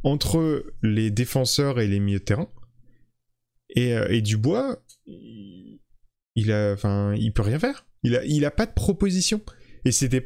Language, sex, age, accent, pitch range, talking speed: French, male, 20-39, French, 110-135 Hz, 165 wpm